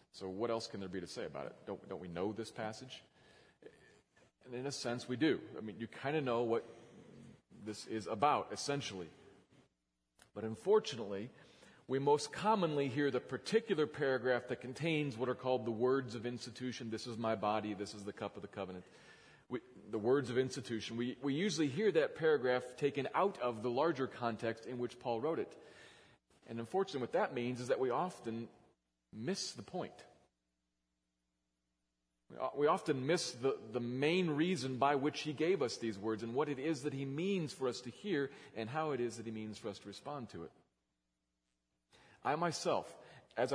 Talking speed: 185 wpm